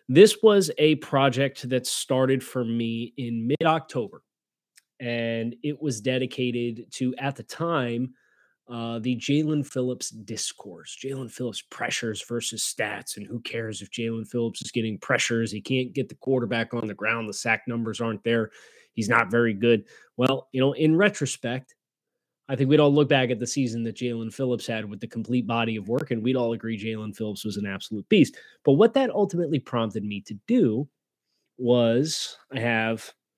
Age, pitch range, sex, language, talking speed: 20-39, 115-140 Hz, male, English, 180 wpm